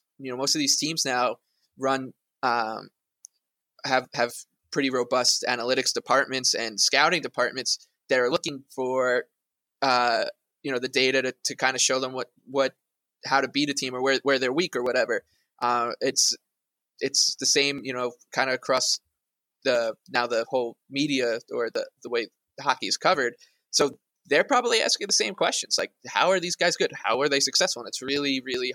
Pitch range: 125-145 Hz